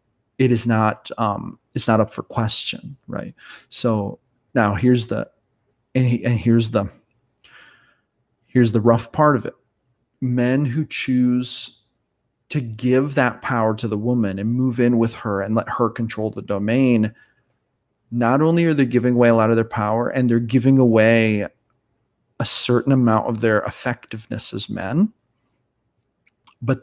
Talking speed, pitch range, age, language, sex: 155 wpm, 115-130 Hz, 30-49, English, male